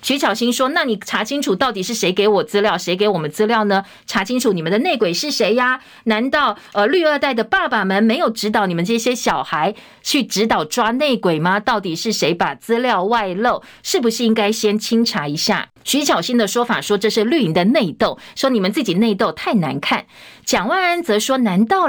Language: Chinese